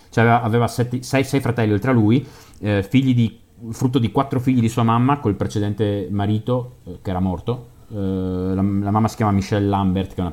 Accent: native